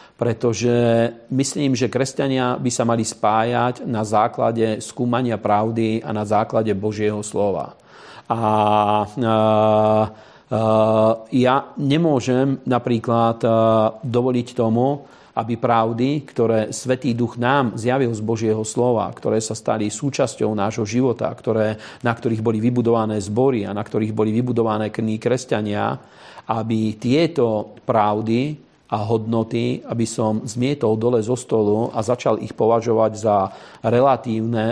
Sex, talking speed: male, 125 wpm